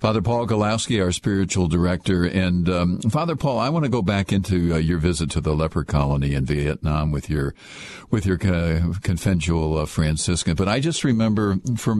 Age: 50-69